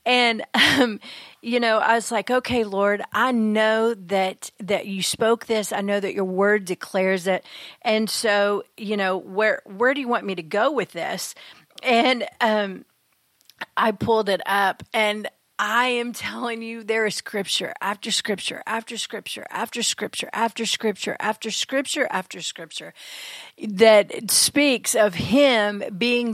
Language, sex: English, female